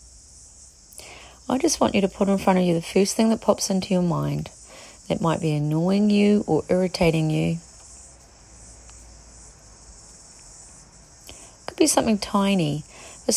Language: English